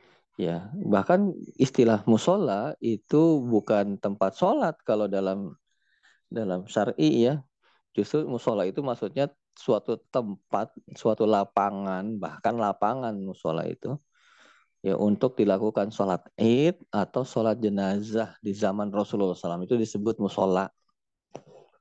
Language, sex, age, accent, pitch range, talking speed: Indonesian, male, 20-39, native, 100-125 Hz, 110 wpm